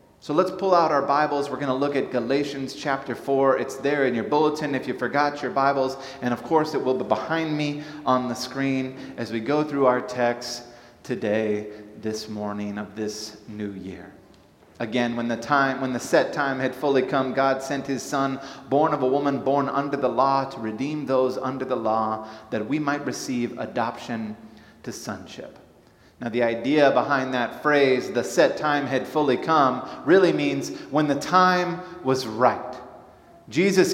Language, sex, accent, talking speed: English, male, American, 180 wpm